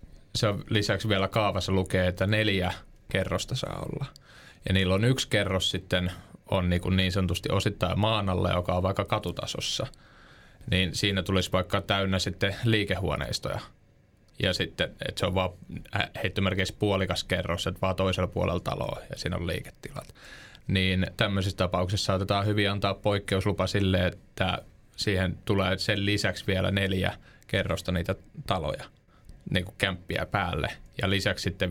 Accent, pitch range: native, 90-100 Hz